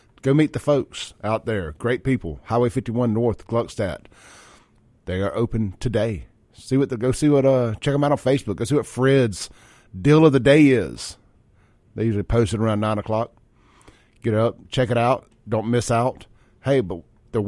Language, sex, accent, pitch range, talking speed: English, male, American, 110-130 Hz, 190 wpm